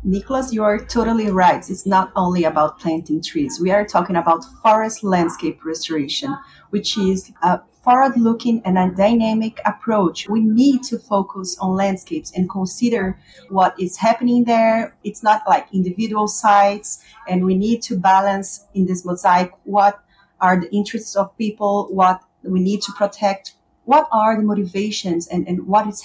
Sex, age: female, 30-49